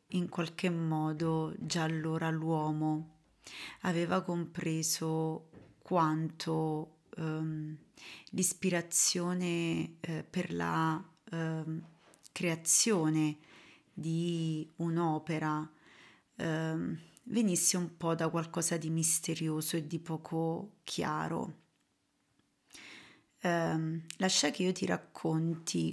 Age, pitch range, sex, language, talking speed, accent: 30-49, 160-175 Hz, female, Italian, 80 wpm, native